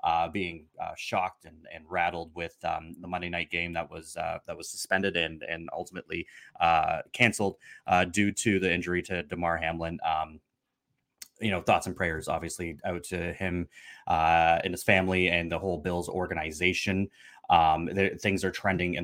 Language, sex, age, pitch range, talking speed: English, male, 20-39, 85-100 Hz, 175 wpm